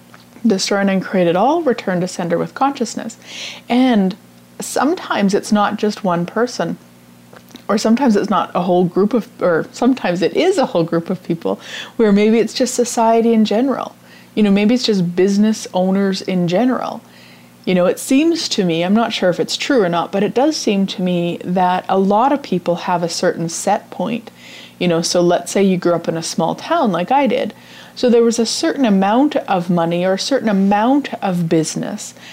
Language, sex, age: English, female, 30-49